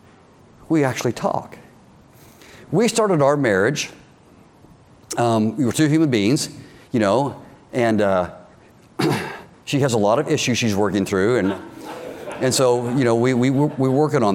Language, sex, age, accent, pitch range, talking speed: English, male, 50-69, American, 110-140 Hz, 150 wpm